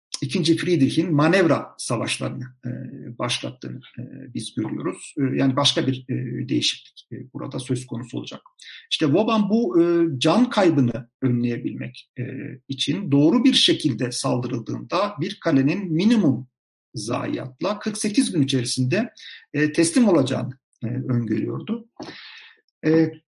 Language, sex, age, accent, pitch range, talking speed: Turkish, male, 50-69, native, 130-165 Hz, 115 wpm